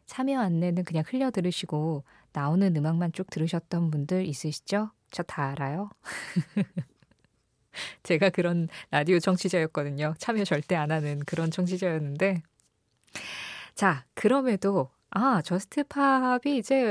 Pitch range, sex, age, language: 160-210 Hz, female, 20-39, Korean